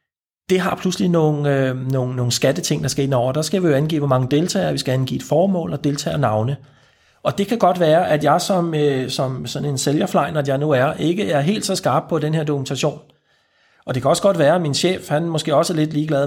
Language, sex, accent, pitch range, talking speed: Danish, male, native, 140-175 Hz, 250 wpm